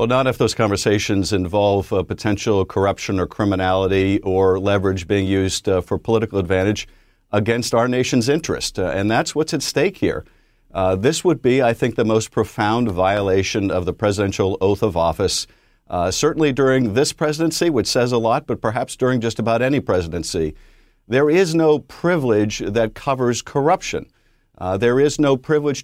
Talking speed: 170 wpm